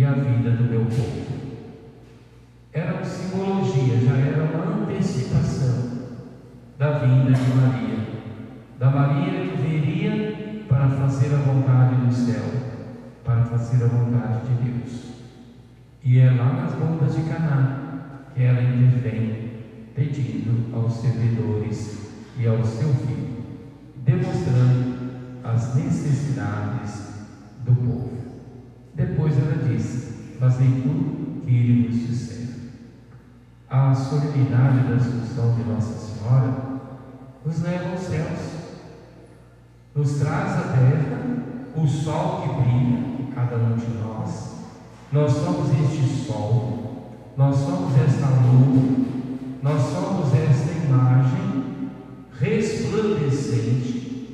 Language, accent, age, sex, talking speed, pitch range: Portuguese, Brazilian, 50-69, male, 110 wpm, 120-140 Hz